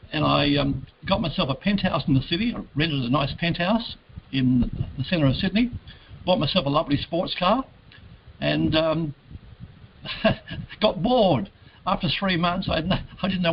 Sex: male